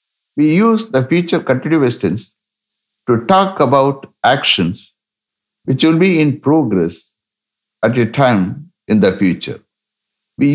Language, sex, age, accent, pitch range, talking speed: English, male, 60-79, Indian, 105-150 Hz, 125 wpm